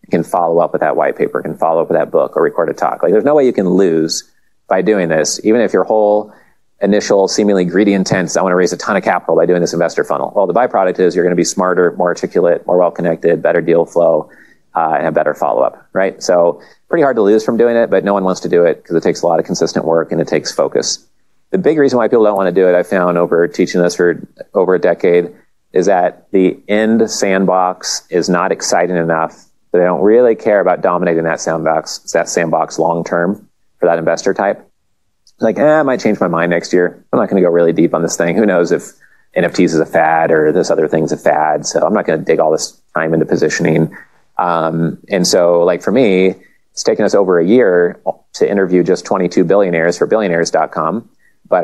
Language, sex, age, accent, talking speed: English, male, 40-59, American, 240 wpm